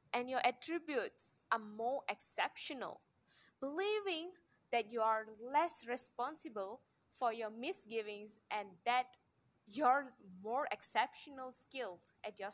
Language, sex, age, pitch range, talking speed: English, female, 10-29, 215-300 Hz, 110 wpm